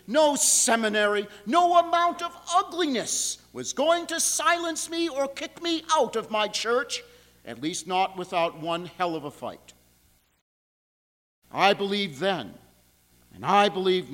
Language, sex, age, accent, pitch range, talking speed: English, male, 50-69, American, 180-265 Hz, 140 wpm